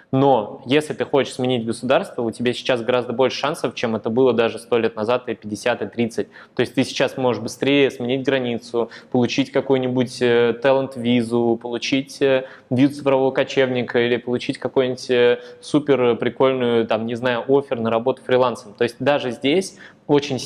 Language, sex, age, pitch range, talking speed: Russian, male, 20-39, 120-135 Hz, 155 wpm